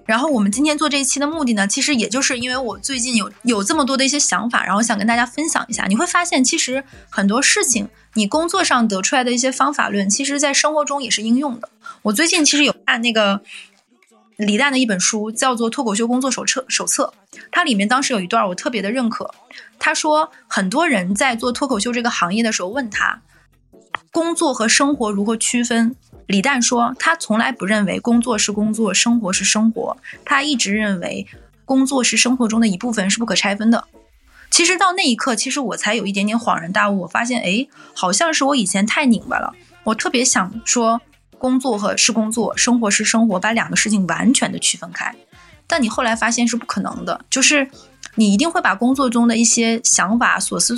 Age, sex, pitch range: 20-39, female, 215-275 Hz